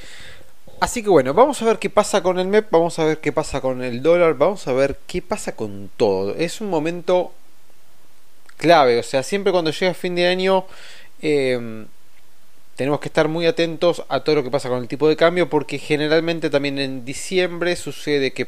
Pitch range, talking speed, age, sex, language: 120-165 Hz, 200 wpm, 20-39, male, Spanish